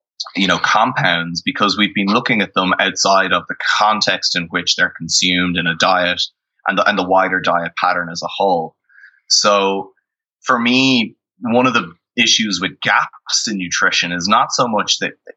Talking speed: 175 wpm